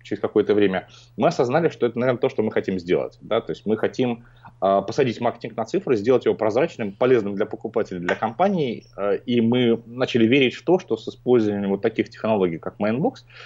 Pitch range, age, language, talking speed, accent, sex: 115-160 Hz, 30-49, Russian, 205 wpm, native, male